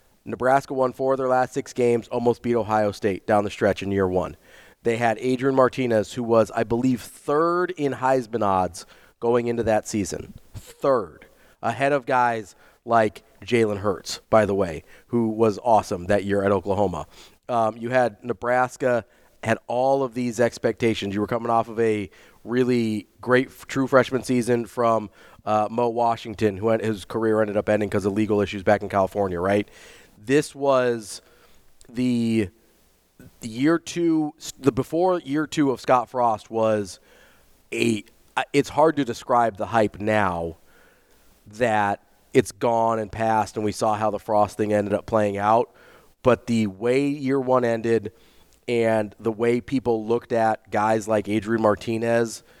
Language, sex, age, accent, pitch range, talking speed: English, male, 30-49, American, 105-125 Hz, 160 wpm